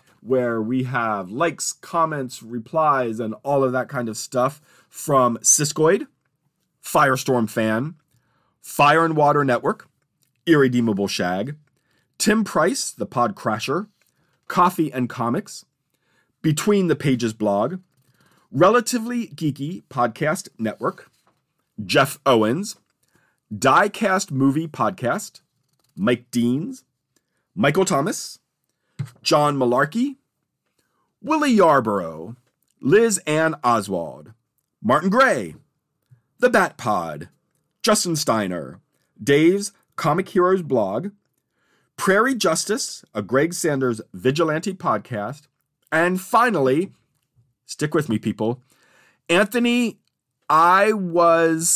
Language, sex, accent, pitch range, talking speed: English, male, American, 125-175 Hz, 95 wpm